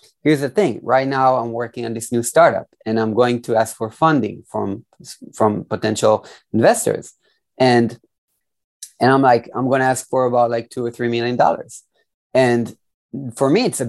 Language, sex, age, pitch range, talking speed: English, male, 30-49, 110-130 Hz, 175 wpm